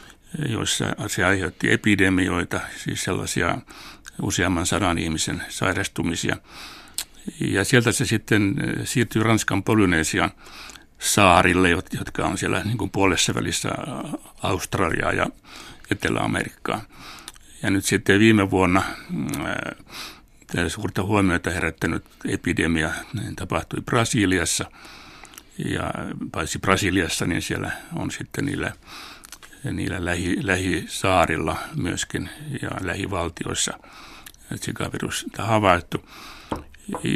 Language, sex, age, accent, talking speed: Finnish, male, 60-79, native, 95 wpm